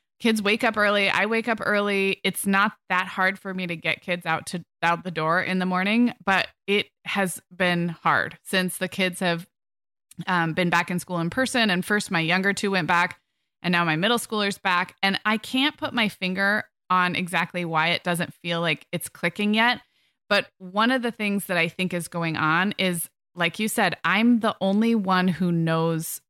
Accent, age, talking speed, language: American, 20-39, 210 wpm, English